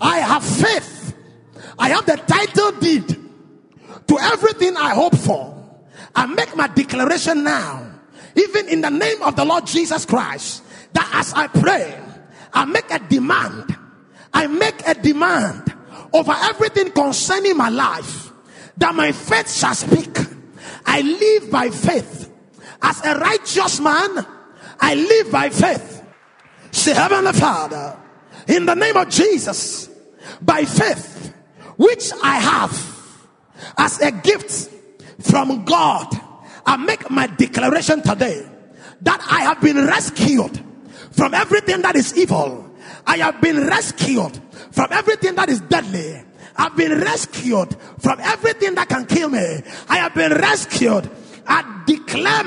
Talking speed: 135 wpm